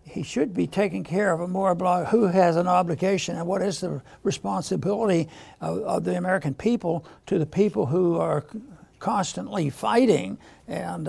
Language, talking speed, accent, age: English, 155 wpm, American, 60-79